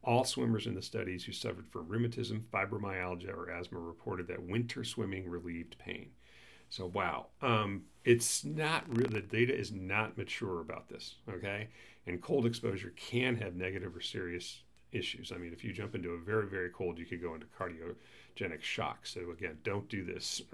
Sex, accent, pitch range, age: male, American, 90-115 Hz, 40-59